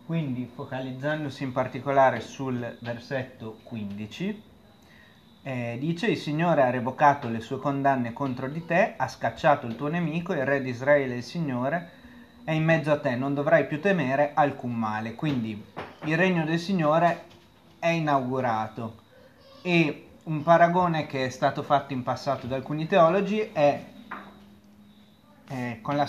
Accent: native